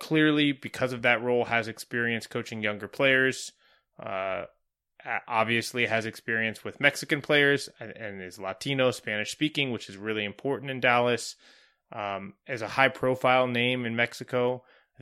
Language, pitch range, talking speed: English, 110-130 Hz, 150 wpm